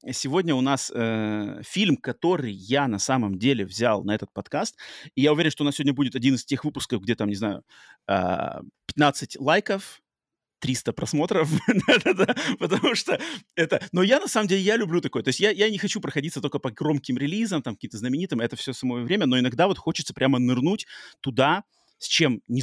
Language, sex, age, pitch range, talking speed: Russian, male, 30-49, 120-155 Hz, 195 wpm